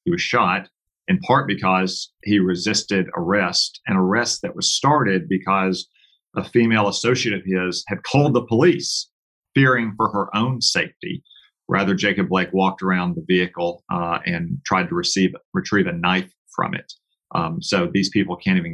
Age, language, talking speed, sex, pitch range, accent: 40-59, English, 165 wpm, male, 95-130 Hz, American